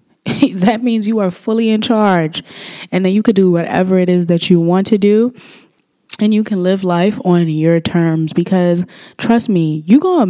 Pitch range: 165-205 Hz